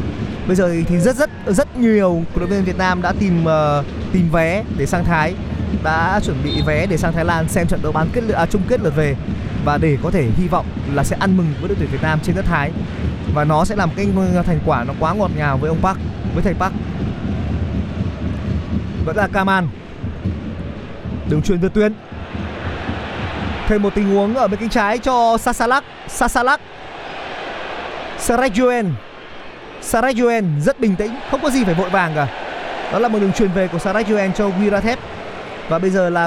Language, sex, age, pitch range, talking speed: Vietnamese, male, 20-39, 160-225 Hz, 195 wpm